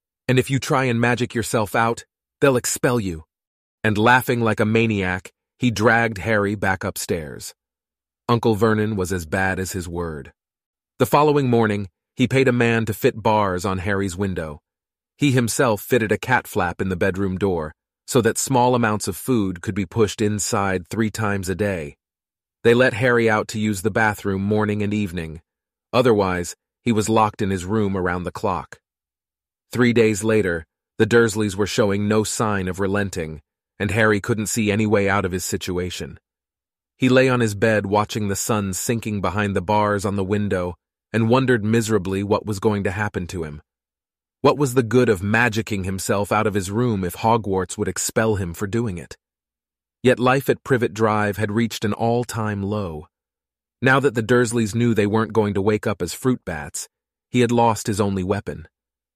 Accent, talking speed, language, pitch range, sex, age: American, 185 wpm, English, 95-115 Hz, male, 30-49